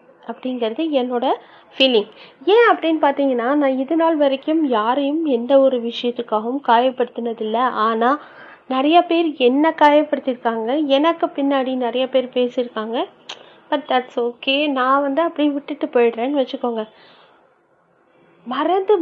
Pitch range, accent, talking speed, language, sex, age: 240-295 Hz, native, 110 wpm, Tamil, female, 30-49